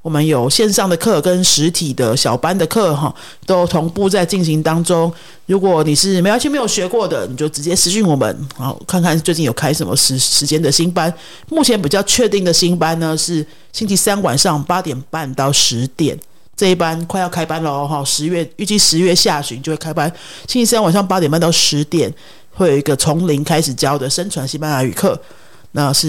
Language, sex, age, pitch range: Spanish, male, 50-69, 150-190 Hz